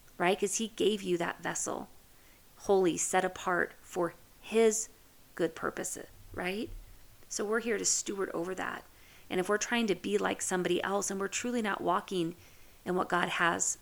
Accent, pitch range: American, 165-195 Hz